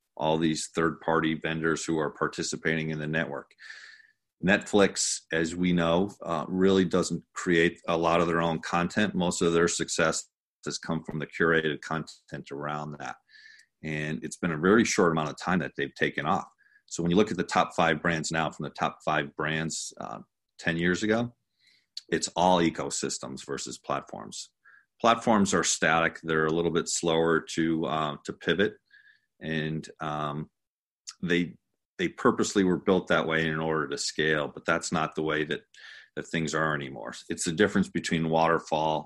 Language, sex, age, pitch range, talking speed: English, male, 40-59, 80-85 Hz, 175 wpm